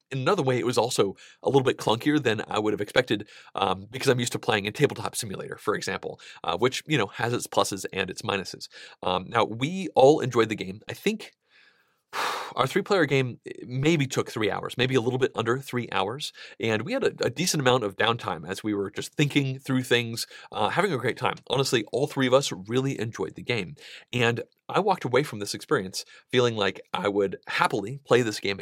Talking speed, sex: 220 wpm, male